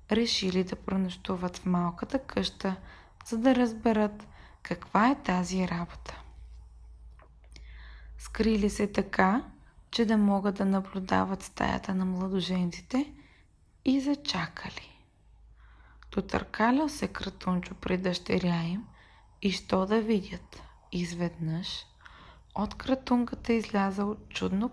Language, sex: Bulgarian, female